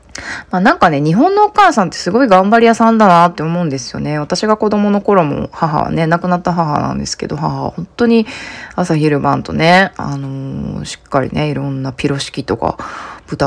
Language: Japanese